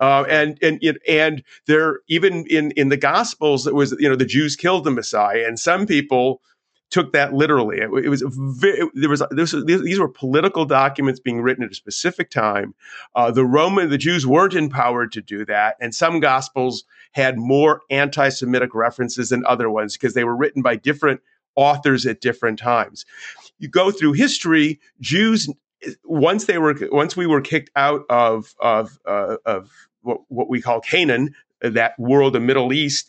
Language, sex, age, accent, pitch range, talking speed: English, male, 40-59, American, 125-155 Hz, 180 wpm